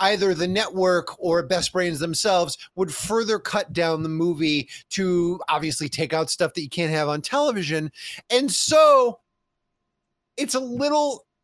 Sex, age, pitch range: male, 30-49, 155-220 Hz